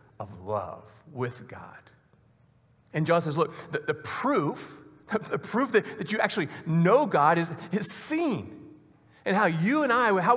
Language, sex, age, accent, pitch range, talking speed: English, male, 40-59, American, 135-190 Hz, 160 wpm